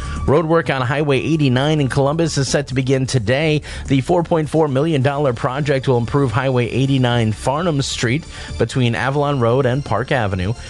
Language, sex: English, male